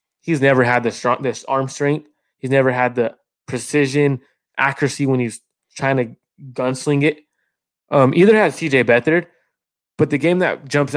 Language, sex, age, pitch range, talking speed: English, male, 20-39, 125-155 Hz, 165 wpm